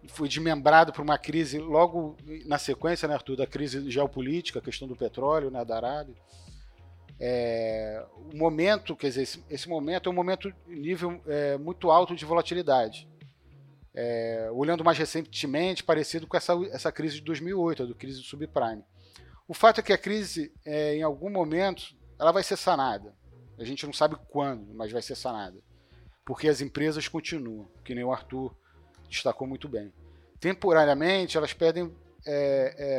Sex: male